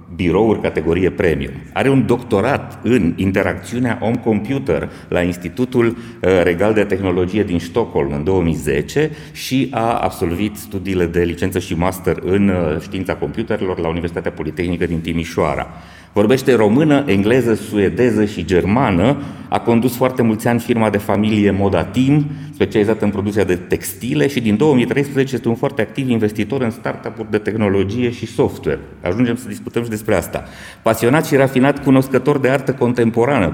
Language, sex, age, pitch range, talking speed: Romanian, male, 30-49, 95-125 Hz, 150 wpm